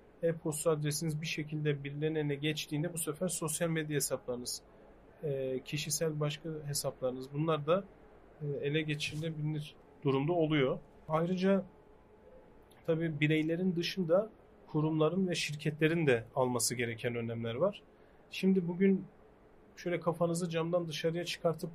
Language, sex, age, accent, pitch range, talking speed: Turkish, male, 40-59, native, 145-170 Hz, 110 wpm